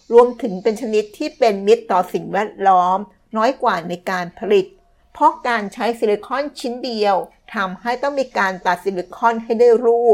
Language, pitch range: Thai, 190-235 Hz